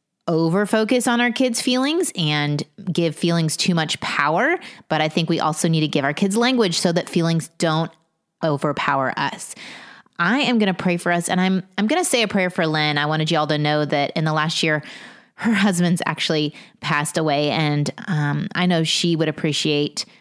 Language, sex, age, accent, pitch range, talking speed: English, female, 30-49, American, 155-195 Hz, 200 wpm